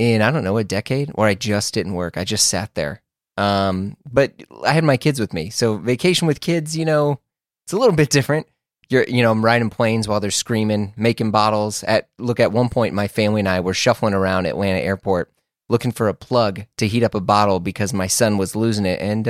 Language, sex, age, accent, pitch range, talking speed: English, male, 30-49, American, 100-125 Hz, 235 wpm